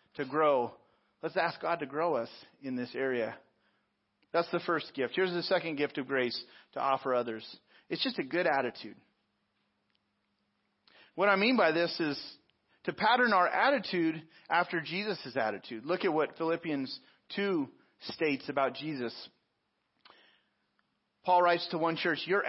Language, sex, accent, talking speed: English, male, American, 150 wpm